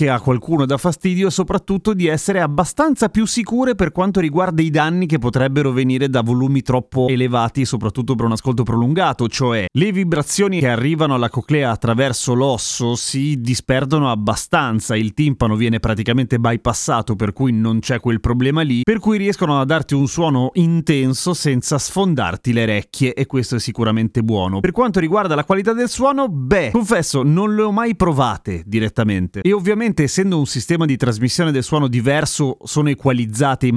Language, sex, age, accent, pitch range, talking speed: Italian, male, 30-49, native, 115-155 Hz, 170 wpm